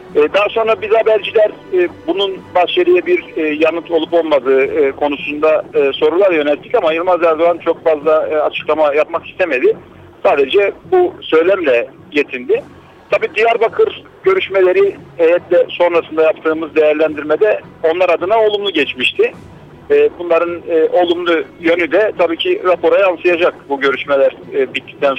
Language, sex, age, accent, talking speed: Turkish, male, 50-69, native, 110 wpm